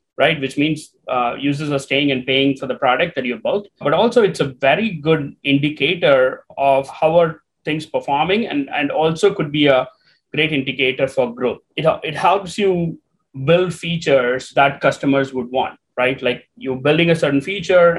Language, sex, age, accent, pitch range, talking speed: English, male, 30-49, Indian, 130-160 Hz, 180 wpm